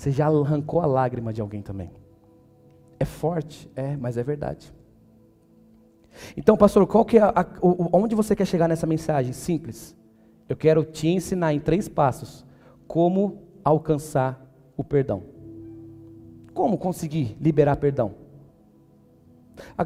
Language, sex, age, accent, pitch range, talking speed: Portuguese, male, 40-59, Brazilian, 135-195 Hz, 135 wpm